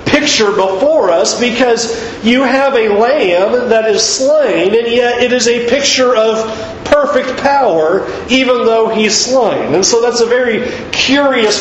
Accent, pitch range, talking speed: American, 190-250 Hz, 155 wpm